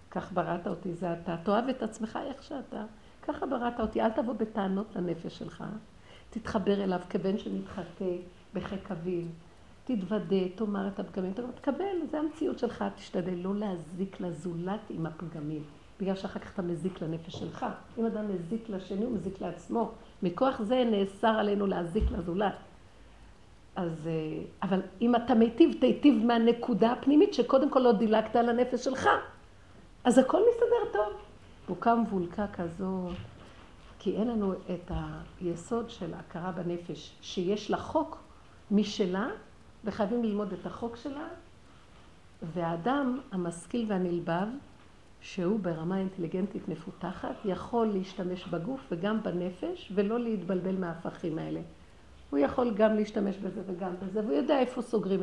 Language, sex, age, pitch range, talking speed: Hebrew, female, 50-69, 180-230 Hz, 125 wpm